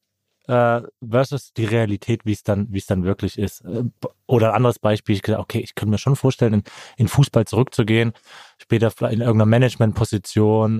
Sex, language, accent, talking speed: male, German, German, 165 wpm